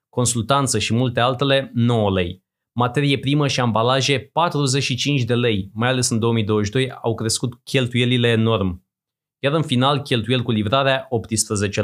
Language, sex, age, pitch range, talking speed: Romanian, male, 20-39, 115-145 Hz, 140 wpm